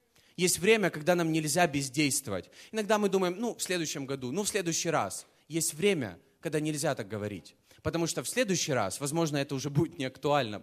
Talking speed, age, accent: 190 wpm, 20-39, native